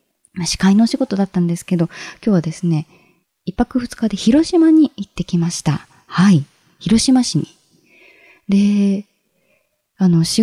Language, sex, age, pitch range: Japanese, female, 20-39, 155-235 Hz